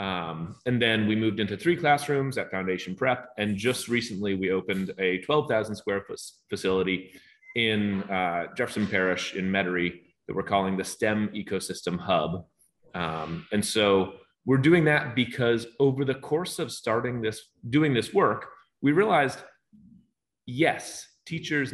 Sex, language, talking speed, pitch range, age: male, English, 150 wpm, 95-130 Hz, 30-49